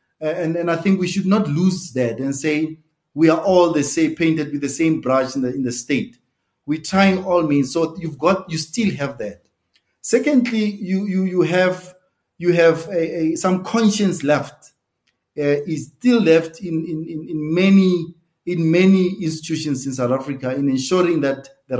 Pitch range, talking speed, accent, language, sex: 150-190 Hz, 185 wpm, South African, English, male